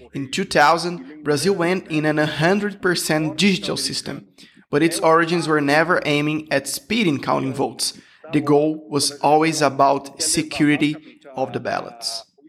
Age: 20-39